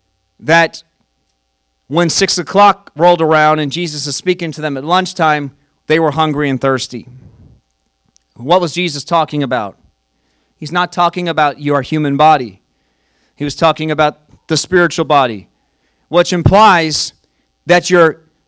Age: 40-59